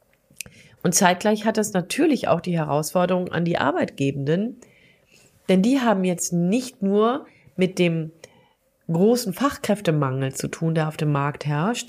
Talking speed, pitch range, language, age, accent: 140 wpm, 150-210 Hz, German, 40-59, German